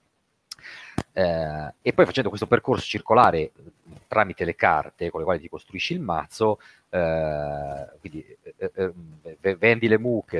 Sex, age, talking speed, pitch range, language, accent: male, 40-59, 150 wpm, 95-135 Hz, Italian, native